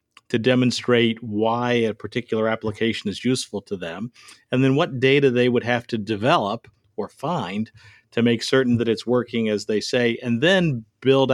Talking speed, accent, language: 175 wpm, American, English